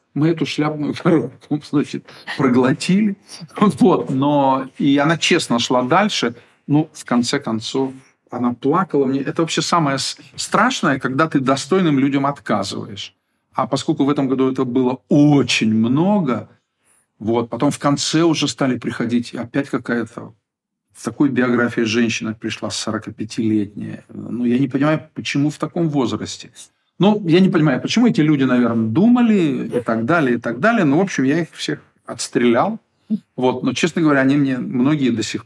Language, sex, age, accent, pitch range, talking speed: Russian, male, 50-69, native, 120-155 Hz, 150 wpm